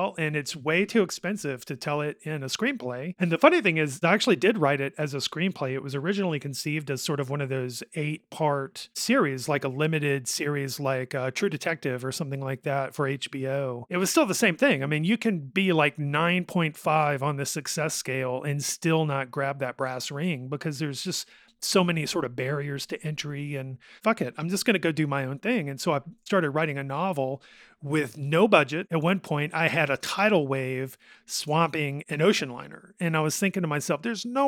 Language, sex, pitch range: English, male, 140-180 Hz